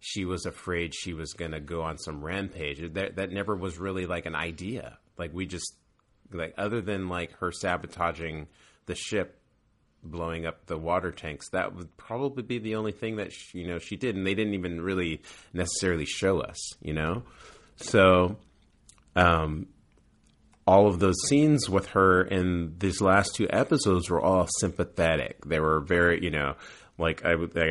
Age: 30-49